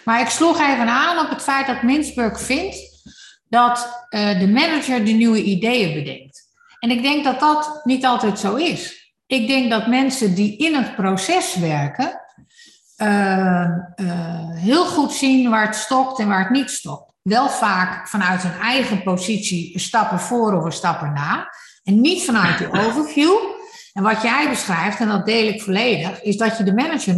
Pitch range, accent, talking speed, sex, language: 185-265 Hz, Dutch, 175 wpm, female, Dutch